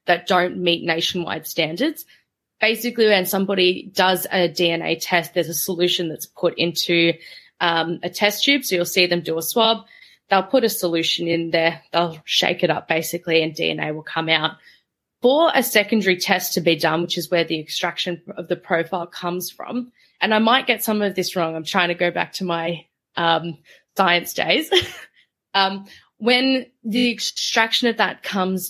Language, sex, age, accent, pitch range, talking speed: English, female, 20-39, Australian, 170-210 Hz, 180 wpm